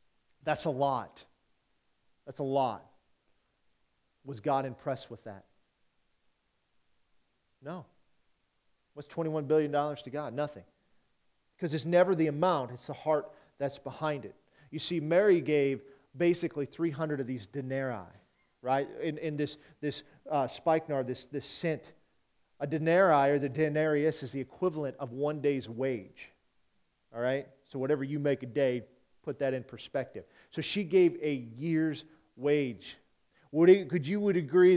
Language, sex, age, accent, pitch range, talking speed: English, male, 40-59, American, 140-175 Hz, 145 wpm